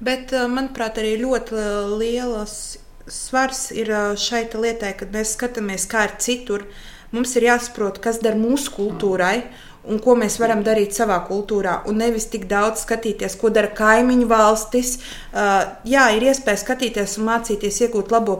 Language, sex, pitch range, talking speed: English, female, 200-235 Hz, 150 wpm